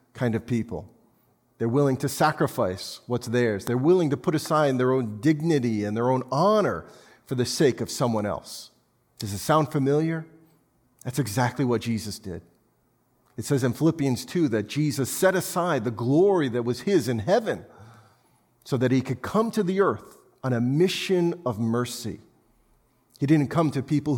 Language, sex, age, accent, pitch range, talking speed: English, male, 40-59, American, 115-150 Hz, 175 wpm